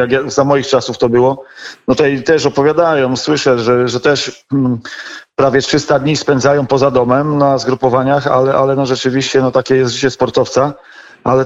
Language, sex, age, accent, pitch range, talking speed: Polish, male, 40-59, native, 130-155 Hz, 180 wpm